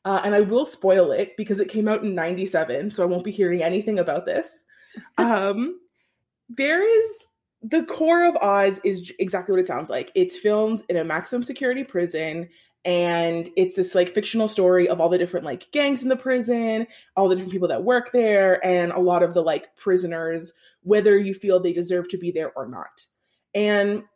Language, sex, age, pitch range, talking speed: English, female, 20-39, 175-220 Hz, 200 wpm